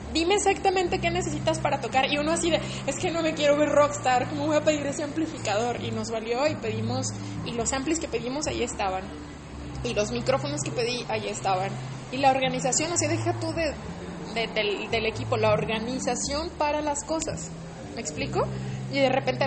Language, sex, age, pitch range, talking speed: Spanish, female, 20-39, 190-290 Hz, 200 wpm